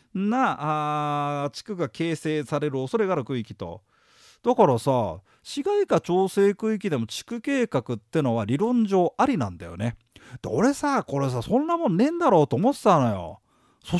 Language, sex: Japanese, male